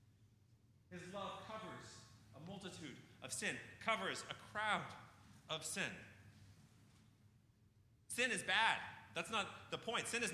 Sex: male